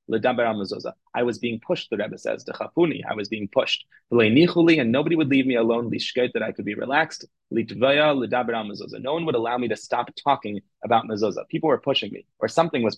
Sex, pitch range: male, 110-135 Hz